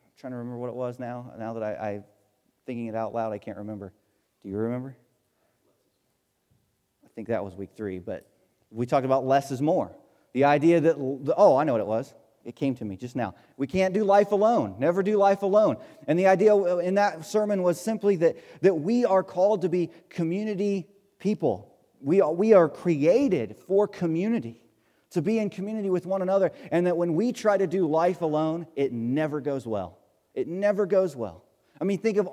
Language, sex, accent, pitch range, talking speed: English, male, American, 120-190 Hz, 200 wpm